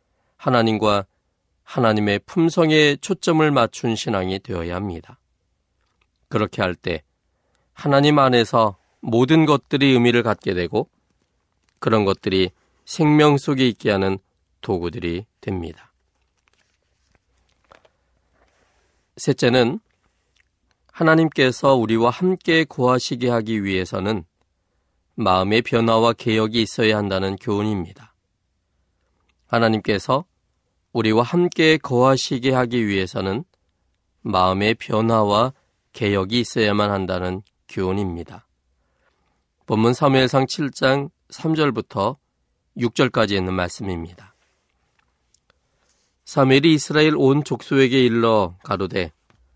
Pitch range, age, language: 90-130 Hz, 40-59, Korean